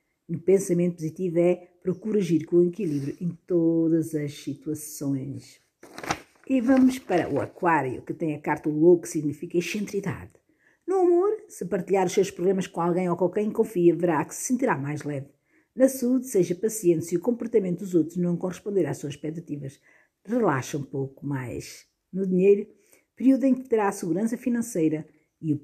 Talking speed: 175 wpm